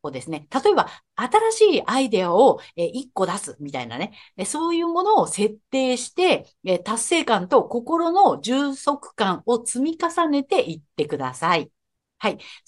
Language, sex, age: Japanese, female, 50-69